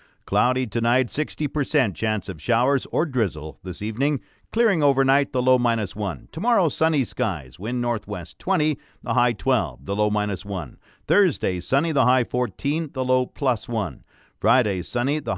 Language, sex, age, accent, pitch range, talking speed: English, male, 50-69, American, 105-140 Hz, 160 wpm